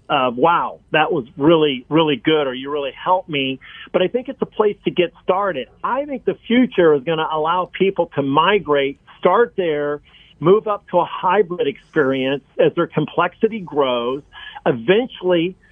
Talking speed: 170 wpm